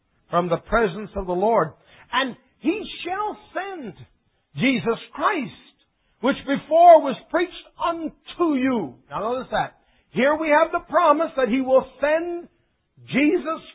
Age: 50-69